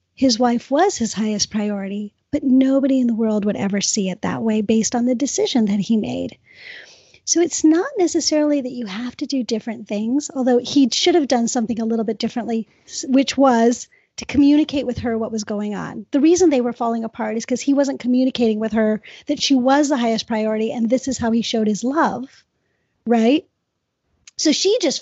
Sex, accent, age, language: female, American, 30-49, English